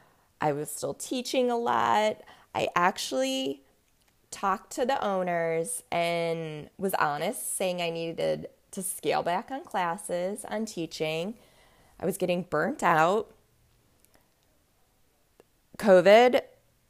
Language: English